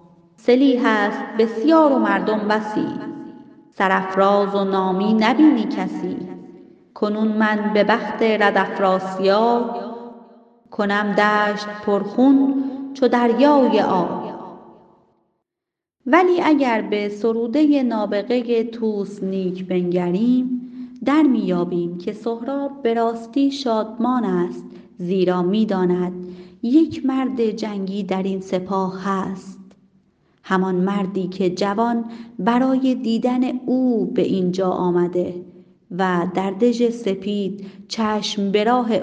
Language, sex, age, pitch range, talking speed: Persian, female, 30-49, 195-245 Hz, 95 wpm